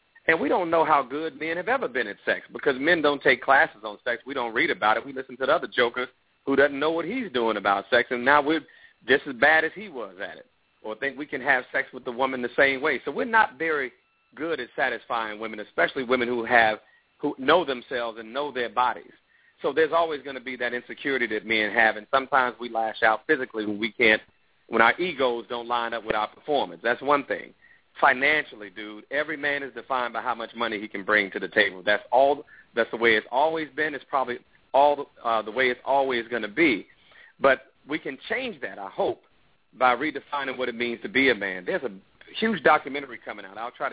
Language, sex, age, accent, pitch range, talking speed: English, male, 40-59, American, 115-145 Hz, 235 wpm